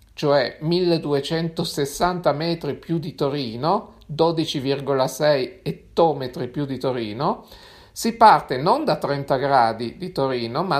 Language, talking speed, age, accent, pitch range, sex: Italian, 110 wpm, 50-69, native, 140-180 Hz, male